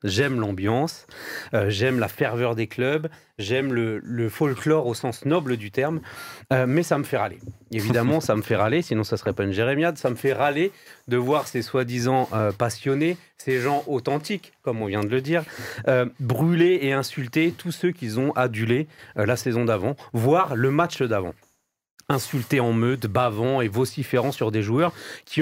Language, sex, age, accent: French, male, 40-59, French